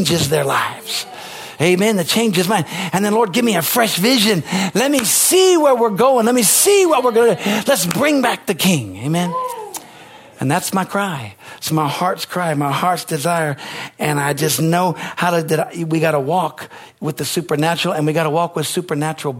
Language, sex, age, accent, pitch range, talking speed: English, male, 50-69, American, 155-200 Hz, 200 wpm